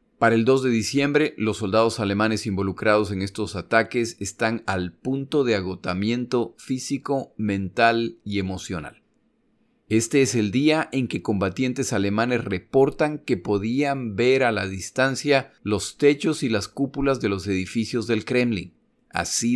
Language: Spanish